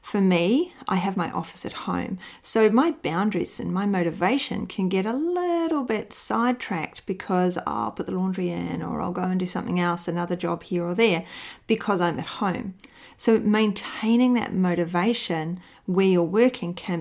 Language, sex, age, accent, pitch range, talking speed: English, female, 40-59, Australian, 170-215 Hz, 175 wpm